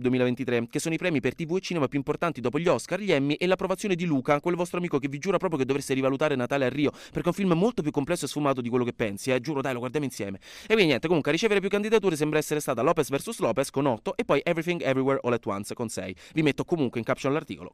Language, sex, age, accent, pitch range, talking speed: Italian, male, 20-39, native, 125-165 Hz, 275 wpm